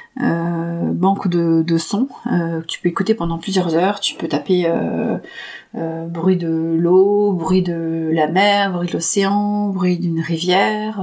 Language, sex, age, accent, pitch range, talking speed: French, female, 30-49, French, 175-215 Hz, 165 wpm